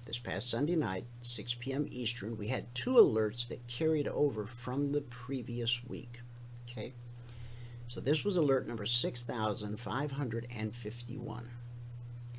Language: English